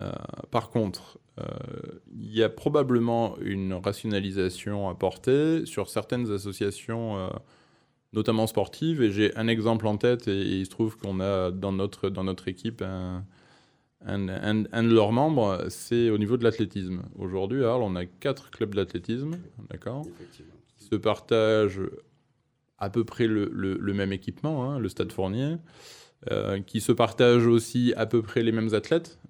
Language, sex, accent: French, male, French